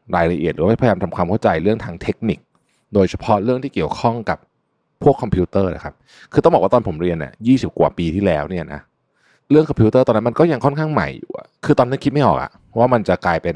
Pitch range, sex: 90-125 Hz, male